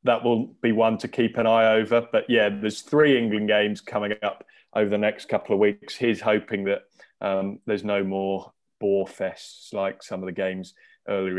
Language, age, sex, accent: English, 20-39, male, British